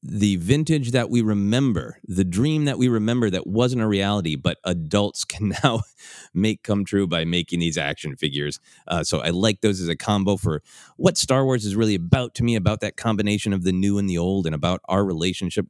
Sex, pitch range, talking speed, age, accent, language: male, 85-110 Hz, 215 wpm, 30-49, American, English